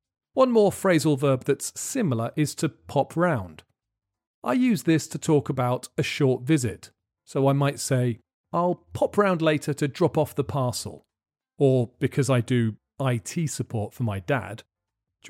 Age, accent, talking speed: 40-59, British, 165 wpm